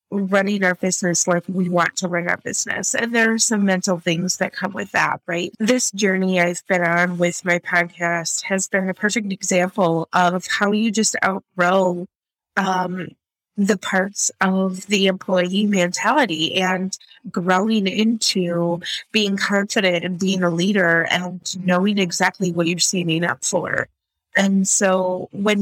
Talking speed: 155 wpm